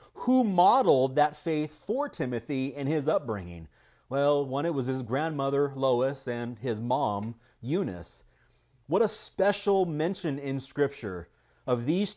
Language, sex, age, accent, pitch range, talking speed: English, male, 30-49, American, 130-180 Hz, 140 wpm